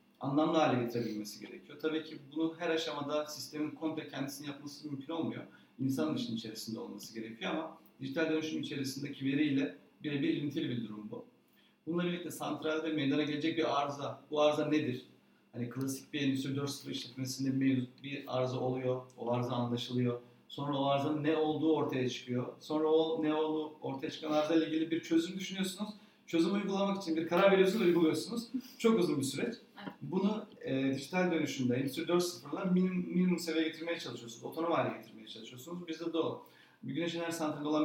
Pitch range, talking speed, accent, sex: 130-160 Hz, 170 wpm, native, male